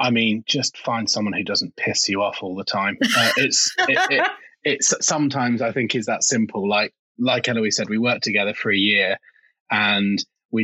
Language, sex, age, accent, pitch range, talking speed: English, male, 20-39, British, 105-125 Hz, 190 wpm